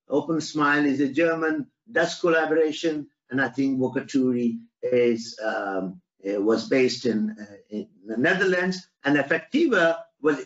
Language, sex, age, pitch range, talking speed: English, male, 60-79, 135-190 Hz, 120 wpm